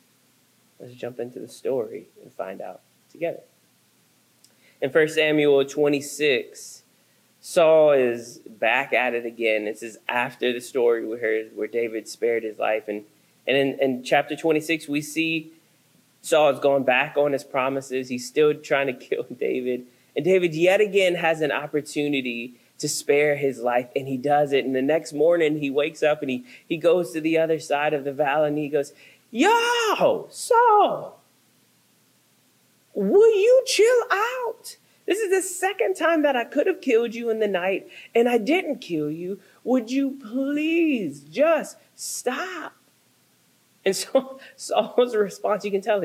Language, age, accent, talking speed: English, 20-39, American, 160 wpm